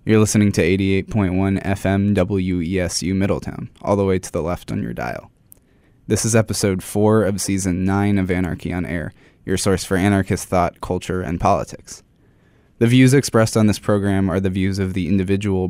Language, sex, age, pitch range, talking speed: English, male, 20-39, 95-105 Hz, 180 wpm